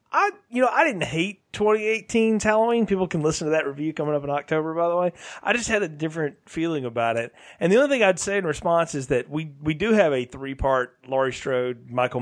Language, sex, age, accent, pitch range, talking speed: English, male, 30-49, American, 125-175 Hz, 235 wpm